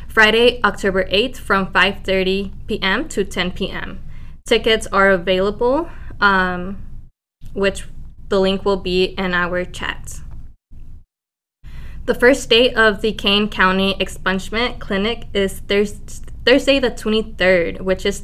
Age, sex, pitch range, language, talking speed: 10-29, female, 185-210 Hz, English, 120 wpm